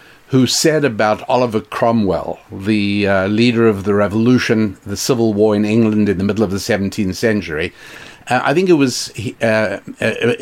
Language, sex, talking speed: English, male, 165 wpm